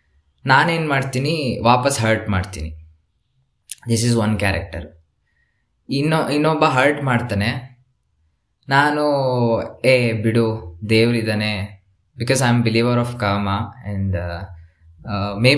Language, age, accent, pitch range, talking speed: Kannada, 20-39, native, 95-125 Hz, 100 wpm